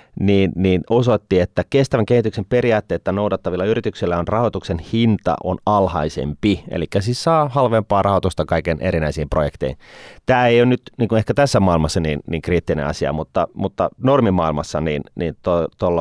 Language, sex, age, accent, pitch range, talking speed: Finnish, male, 30-49, native, 85-110 Hz, 150 wpm